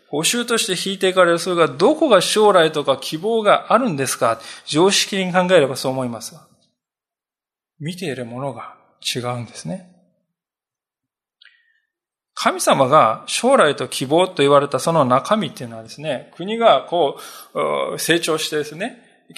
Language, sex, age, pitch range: Japanese, male, 20-39, 140-210 Hz